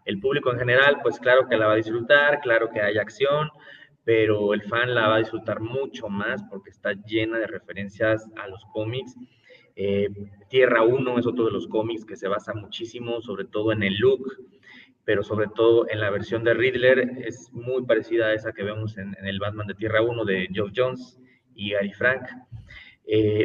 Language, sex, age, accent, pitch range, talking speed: Spanish, male, 30-49, Mexican, 105-120 Hz, 200 wpm